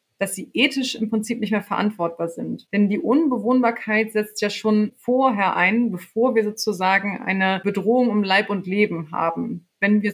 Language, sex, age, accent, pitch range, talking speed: German, female, 30-49, German, 190-220 Hz, 170 wpm